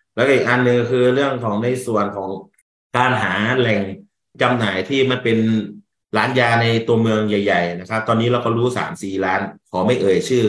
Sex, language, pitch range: male, Thai, 95-115 Hz